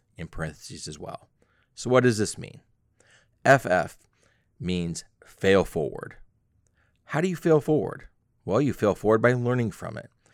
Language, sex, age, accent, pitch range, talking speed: English, male, 30-49, American, 95-125 Hz, 150 wpm